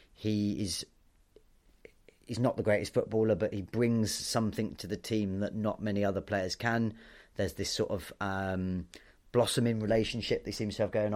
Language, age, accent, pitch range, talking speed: English, 30-49, British, 100-120 Hz, 170 wpm